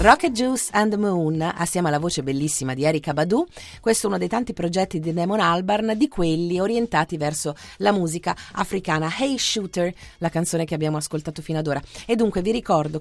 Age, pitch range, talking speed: 30-49, 150-200 Hz, 195 wpm